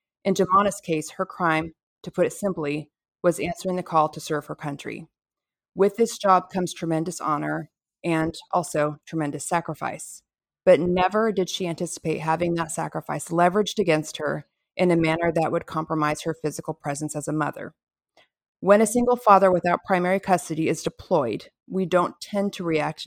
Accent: American